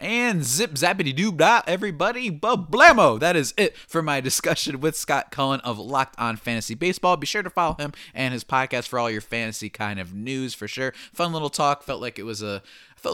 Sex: male